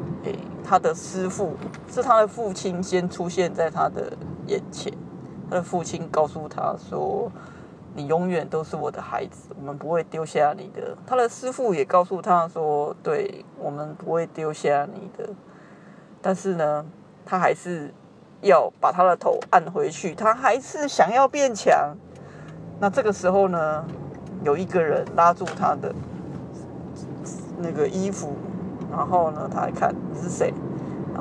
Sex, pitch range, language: female, 165-220 Hz, Chinese